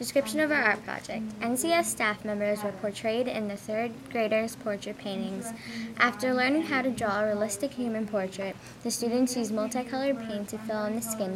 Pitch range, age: 210-240 Hz, 10-29